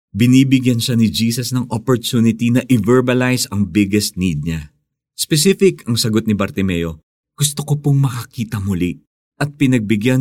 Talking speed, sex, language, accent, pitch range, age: 140 wpm, male, Filipino, native, 90-130 Hz, 50-69